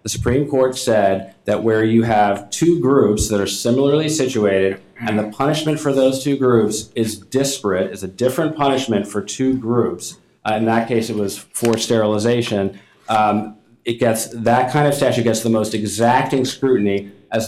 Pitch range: 100-125 Hz